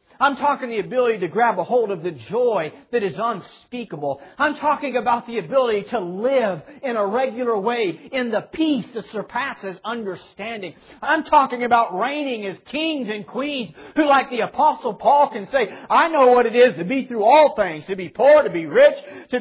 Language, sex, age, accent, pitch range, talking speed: English, male, 40-59, American, 200-280 Hz, 195 wpm